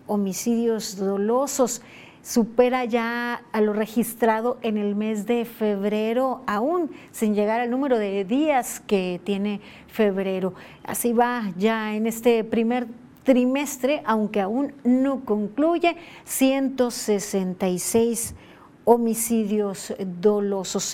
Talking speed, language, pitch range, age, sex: 105 wpm, Spanish, 210-260 Hz, 40-59, female